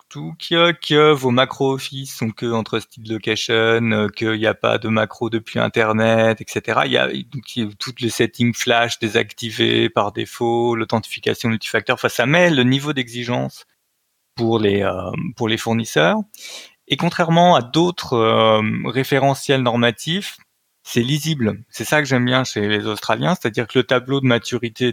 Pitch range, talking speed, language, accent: 110-135 Hz, 160 wpm, French, French